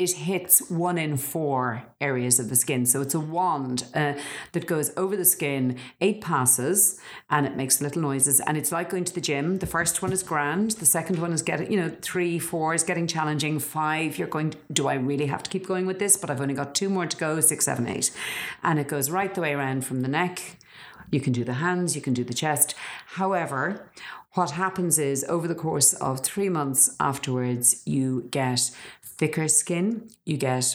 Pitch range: 130-170 Hz